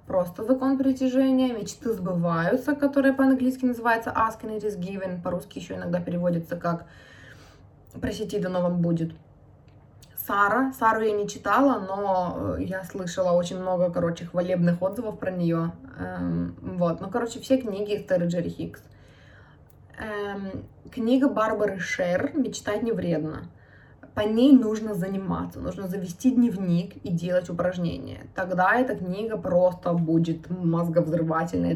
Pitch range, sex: 170-220 Hz, female